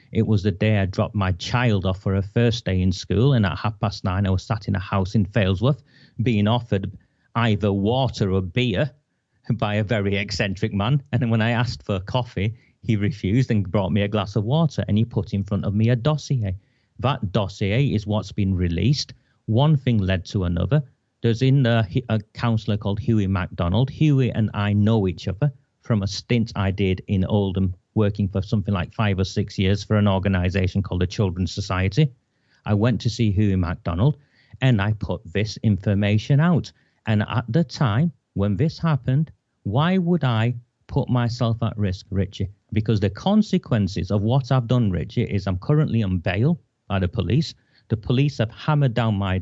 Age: 40-59